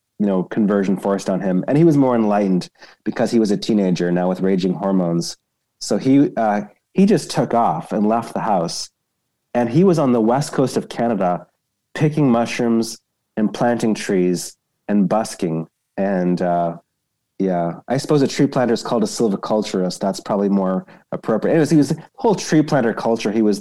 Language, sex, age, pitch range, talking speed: English, male, 30-49, 100-130 Hz, 185 wpm